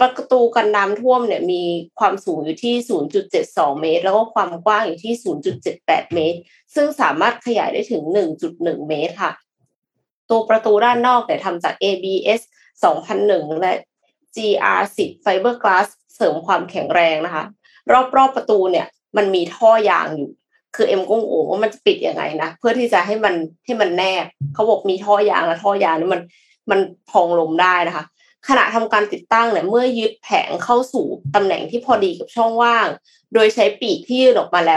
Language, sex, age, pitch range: Thai, female, 20-39, 185-250 Hz